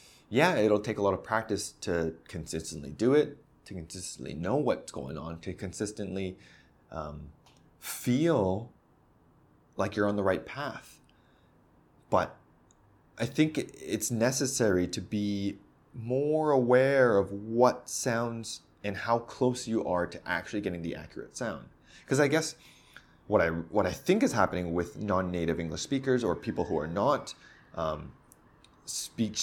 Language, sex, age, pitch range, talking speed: English, male, 20-39, 90-125 Hz, 145 wpm